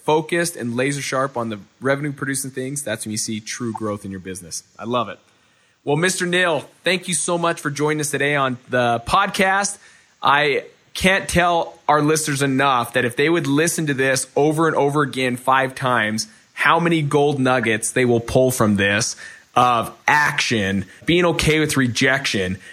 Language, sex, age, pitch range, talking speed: English, male, 20-39, 125-155 Hz, 180 wpm